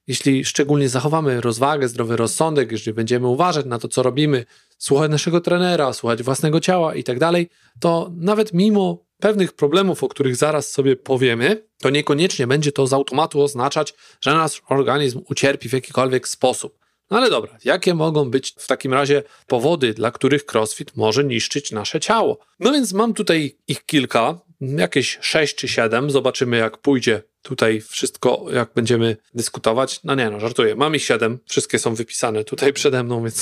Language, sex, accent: Polish, male, native